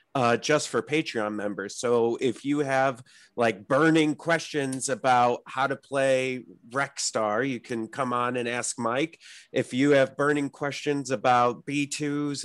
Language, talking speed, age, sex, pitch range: English, 150 wpm, 30-49, male, 130-155 Hz